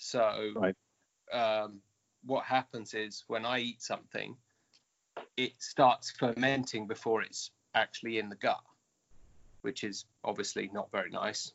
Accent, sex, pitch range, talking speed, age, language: British, male, 110-135 Hz, 125 wpm, 30-49, English